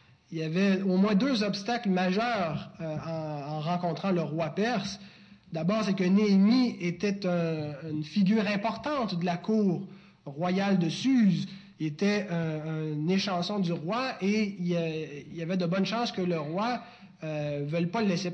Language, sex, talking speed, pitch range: French, male, 170 wpm, 170-205 Hz